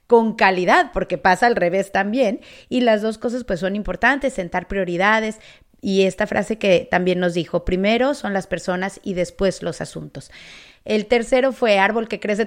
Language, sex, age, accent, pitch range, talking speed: Spanish, female, 30-49, Mexican, 180-225 Hz, 180 wpm